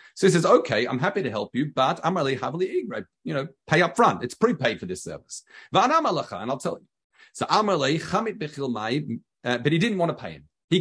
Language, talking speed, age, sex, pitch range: English, 205 wpm, 40-59, male, 145-195 Hz